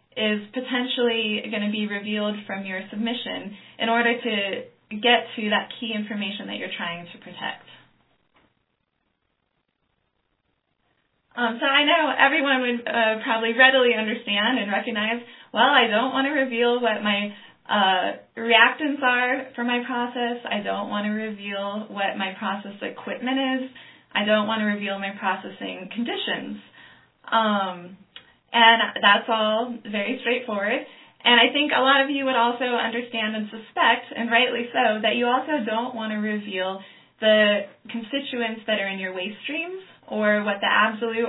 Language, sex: English, female